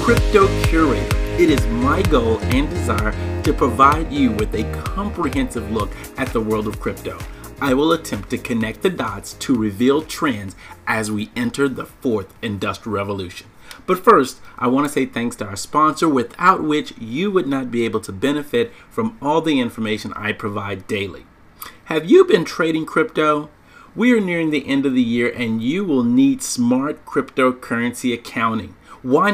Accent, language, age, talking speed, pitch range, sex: American, English, 40-59, 170 wpm, 105-145 Hz, male